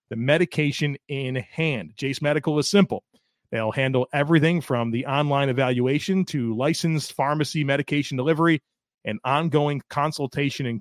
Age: 30-49